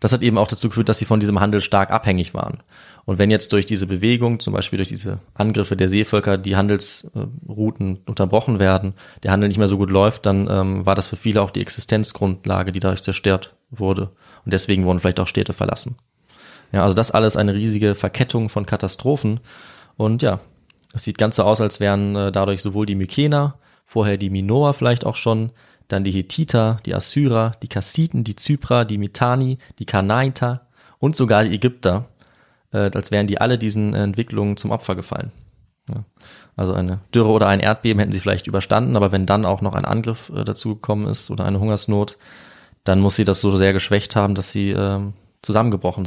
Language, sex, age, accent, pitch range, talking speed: German, male, 20-39, German, 100-115 Hz, 190 wpm